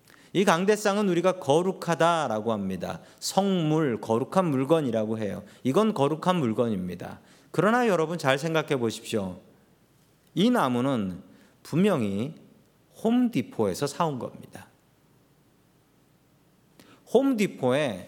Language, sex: Korean, male